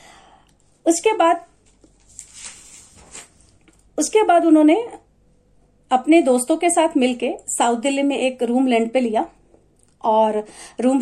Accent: native